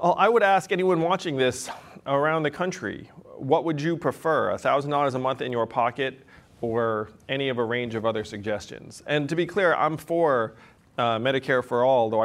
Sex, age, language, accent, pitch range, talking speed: male, 30-49, English, American, 120-155 Hz, 185 wpm